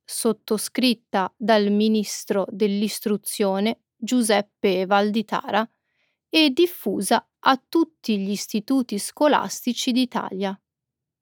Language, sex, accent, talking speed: Italian, female, native, 75 wpm